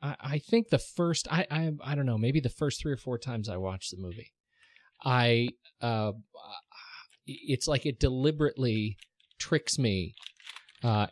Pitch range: 105-135 Hz